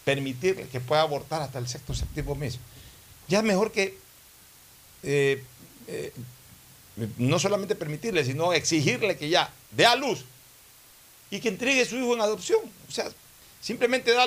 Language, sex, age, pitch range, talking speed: Spanish, male, 60-79, 120-165 Hz, 155 wpm